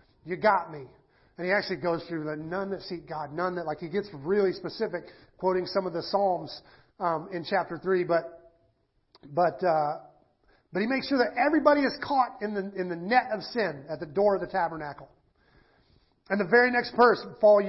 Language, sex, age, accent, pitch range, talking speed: English, male, 40-59, American, 165-205 Hz, 200 wpm